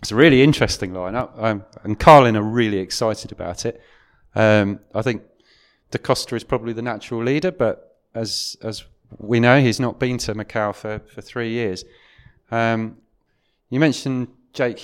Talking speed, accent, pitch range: 165 wpm, British, 100-120 Hz